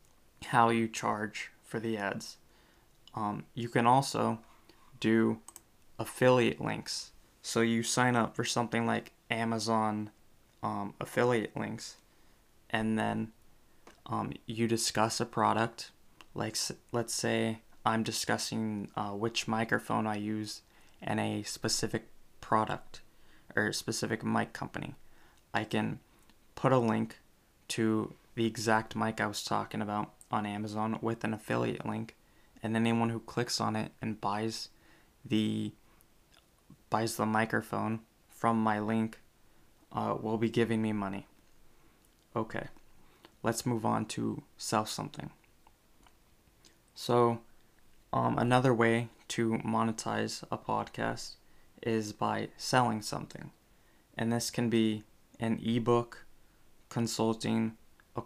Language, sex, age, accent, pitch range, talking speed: English, male, 20-39, American, 110-115 Hz, 120 wpm